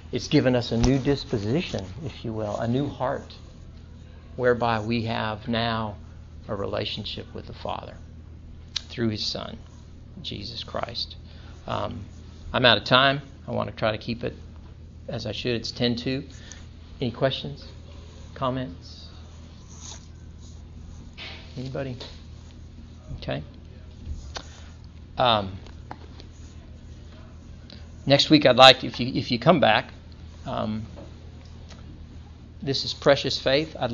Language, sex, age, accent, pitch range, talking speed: English, male, 50-69, American, 80-115 Hz, 115 wpm